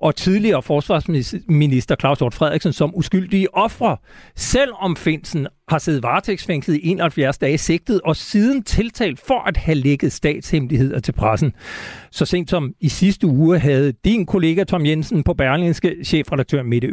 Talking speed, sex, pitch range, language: 150 wpm, male, 140-185 Hz, Danish